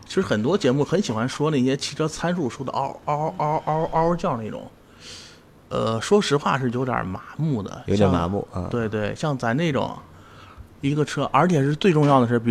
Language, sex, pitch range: Chinese, male, 110-155 Hz